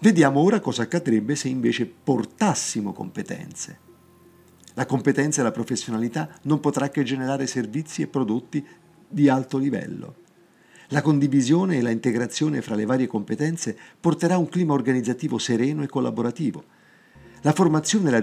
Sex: male